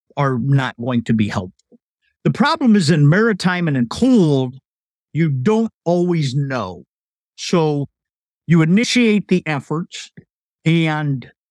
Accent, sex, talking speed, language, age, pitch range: American, male, 125 wpm, English, 50-69, 150-185 Hz